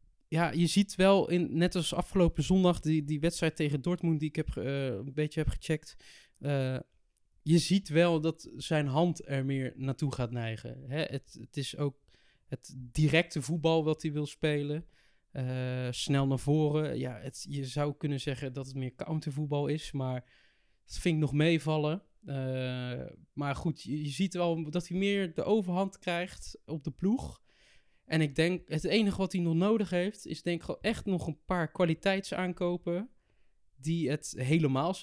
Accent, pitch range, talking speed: Dutch, 135-170 Hz, 180 wpm